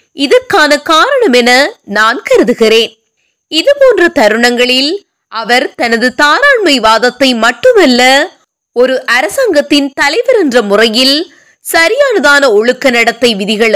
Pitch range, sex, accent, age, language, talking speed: 235-335 Hz, female, native, 20-39, Tamil, 90 wpm